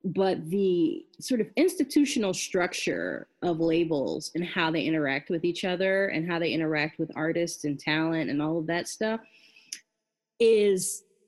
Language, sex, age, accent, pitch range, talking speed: English, female, 30-49, American, 165-220 Hz, 155 wpm